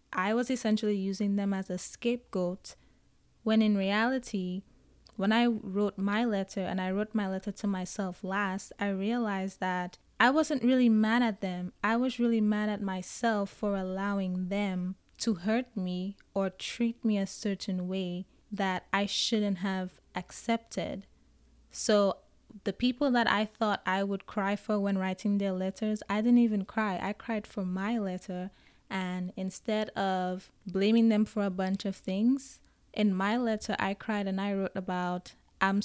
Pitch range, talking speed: 190-220 Hz, 165 wpm